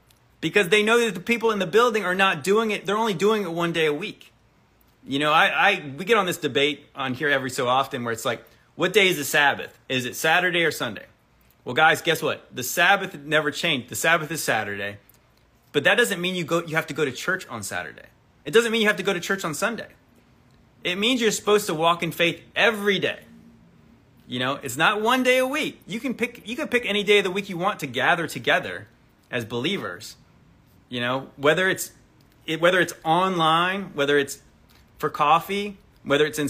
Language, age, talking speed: English, 30-49, 225 wpm